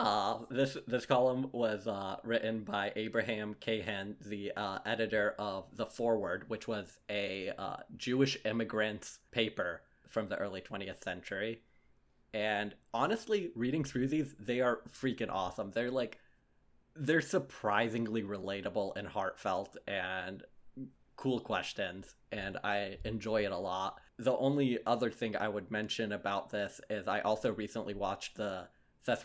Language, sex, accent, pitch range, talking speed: English, male, American, 105-120 Hz, 140 wpm